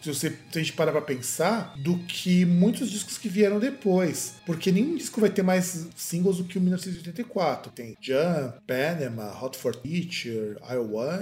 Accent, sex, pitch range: Brazilian, male, 135-200 Hz